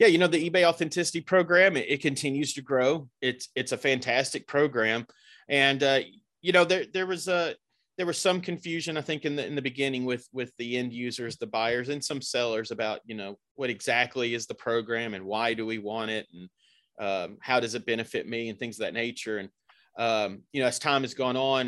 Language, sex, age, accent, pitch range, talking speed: English, male, 30-49, American, 110-145 Hz, 225 wpm